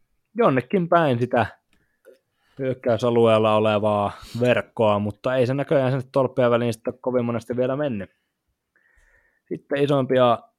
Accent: native